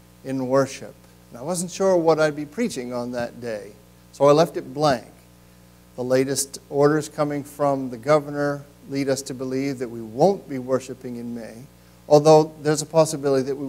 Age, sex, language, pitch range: 50-69, male, English, 120-150 Hz